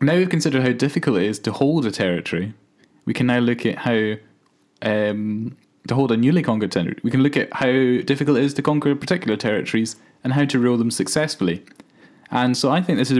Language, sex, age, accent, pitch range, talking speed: English, male, 20-39, British, 105-135 Hz, 220 wpm